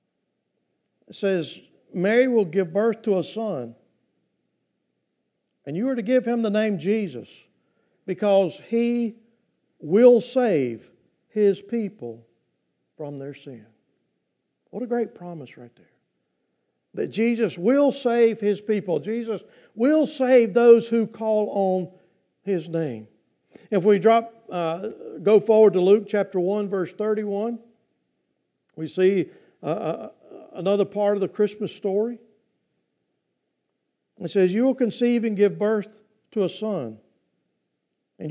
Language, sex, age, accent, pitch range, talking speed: English, male, 50-69, American, 190-230 Hz, 125 wpm